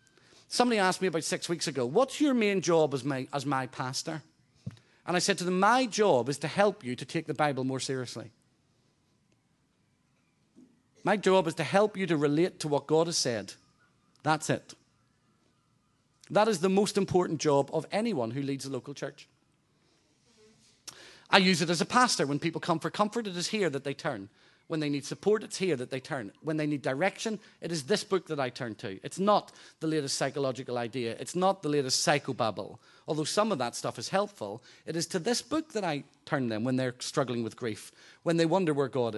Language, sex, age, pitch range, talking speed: English, male, 40-59, 135-195 Hz, 210 wpm